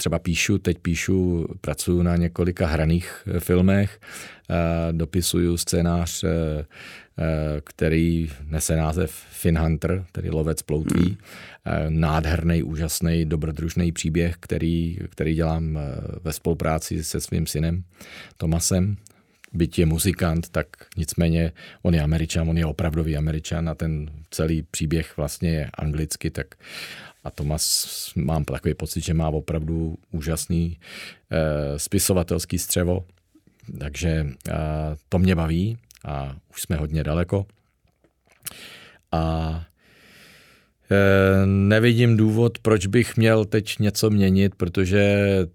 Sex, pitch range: male, 80-95 Hz